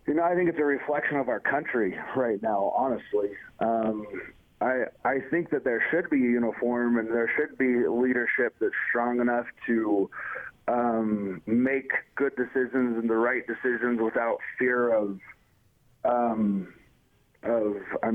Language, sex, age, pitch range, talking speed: English, male, 30-49, 110-130 Hz, 150 wpm